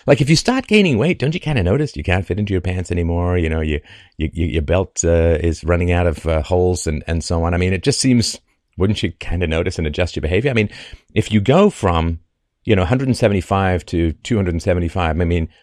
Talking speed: 225 wpm